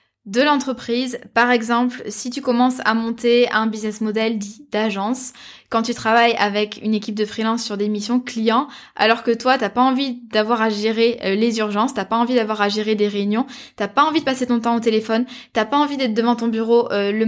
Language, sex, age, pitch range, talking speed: French, female, 10-29, 210-245 Hz, 220 wpm